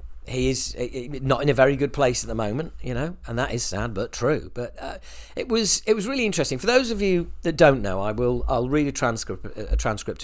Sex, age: male, 40-59